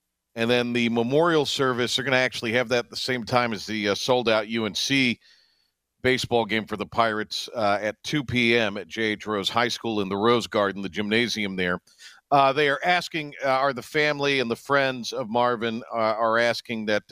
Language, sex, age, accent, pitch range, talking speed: English, male, 50-69, American, 95-120 Hz, 205 wpm